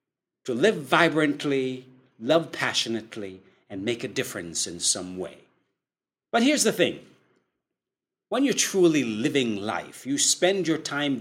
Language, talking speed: English, 135 wpm